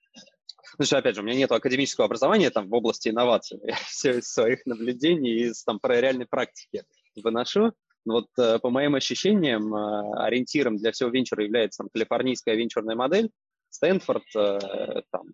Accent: native